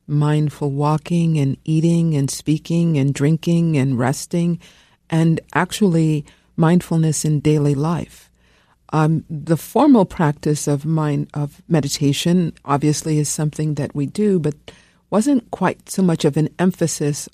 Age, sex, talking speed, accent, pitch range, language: 50-69, female, 130 wpm, American, 125-165 Hz, English